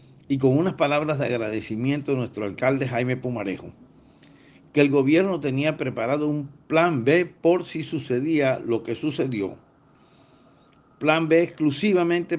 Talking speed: 135 wpm